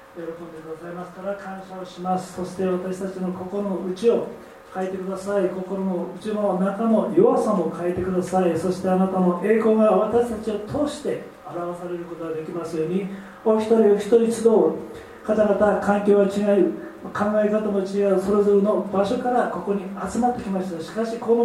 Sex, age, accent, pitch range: male, 40-59, native, 190-235 Hz